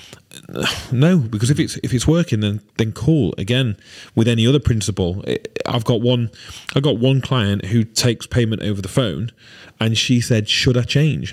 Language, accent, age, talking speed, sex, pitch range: English, British, 30-49, 180 wpm, male, 95-120 Hz